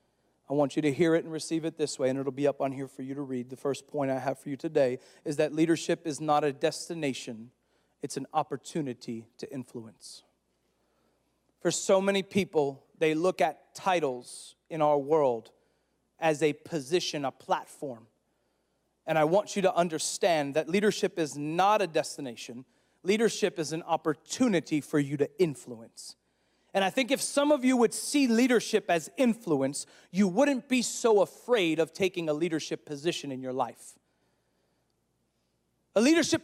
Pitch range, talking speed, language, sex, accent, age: 150-255 Hz, 170 wpm, English, male, American, 40-59